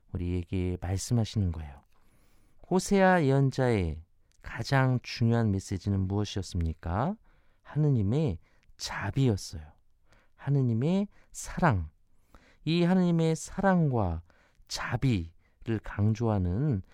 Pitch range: 95-135 Hz